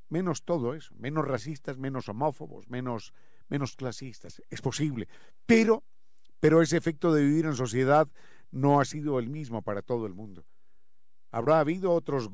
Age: 50-69